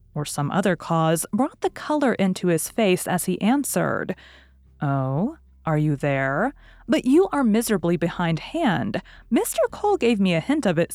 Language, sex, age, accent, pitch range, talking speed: English, female, 30-49, American, 155-215 Hz, 170 wpm